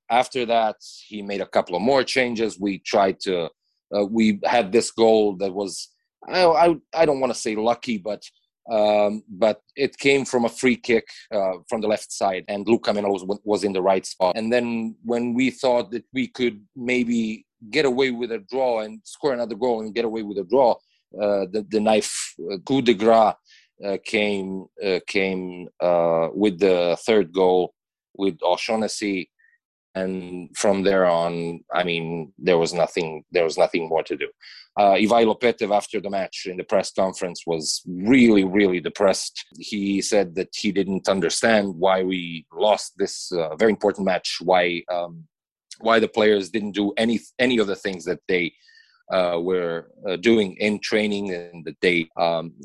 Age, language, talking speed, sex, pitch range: 30-49, English, 180 wpm, male, 95-115 Hz